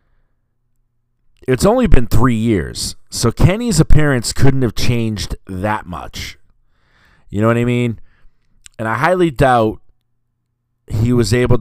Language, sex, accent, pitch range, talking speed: English, male, American, 95-120 Hz, 130 wpm